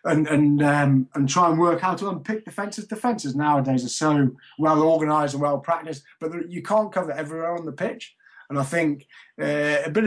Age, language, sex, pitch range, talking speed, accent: 20-39, English, male, 140-170 Hz, 205 wpm, British